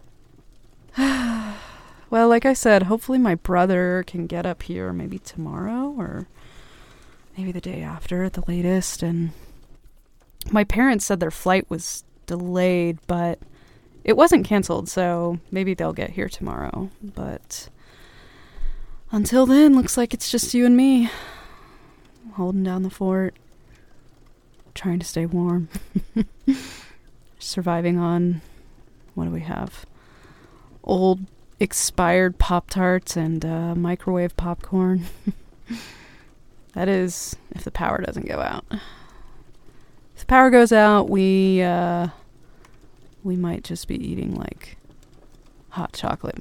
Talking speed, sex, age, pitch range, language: 120 wpm, female, 20-39, 170-205 Hz, English